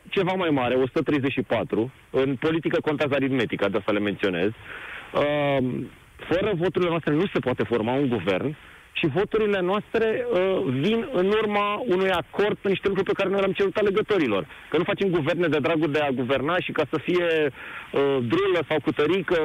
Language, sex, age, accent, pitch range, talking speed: Romanian, male, 30-49, native, 130-175 Hz, 165 wpm